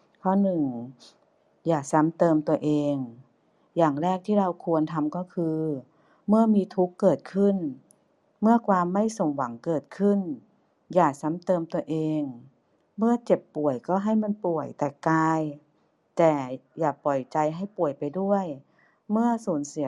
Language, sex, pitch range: Thai, female, 150-180 Hz